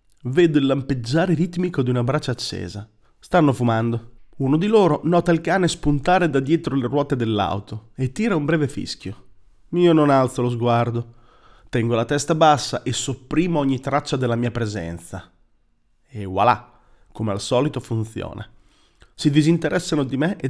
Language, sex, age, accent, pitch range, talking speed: Italian, male, 30-49, native, 115-150 Hz, 160 wpm